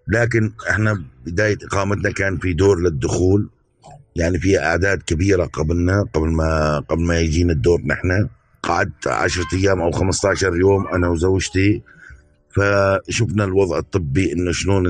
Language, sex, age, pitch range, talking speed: Arabic, male, 50-69, 95-115 Hz, 135 wpm